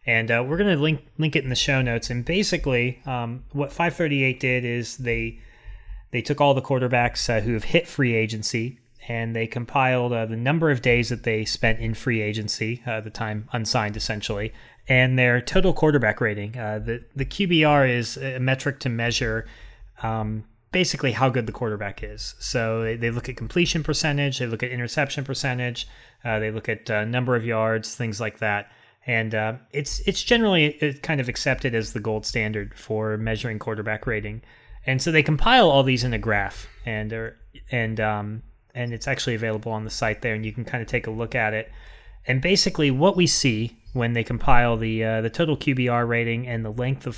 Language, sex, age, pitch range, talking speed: English, male, 30-49, 110-130 Hz, 200 wpm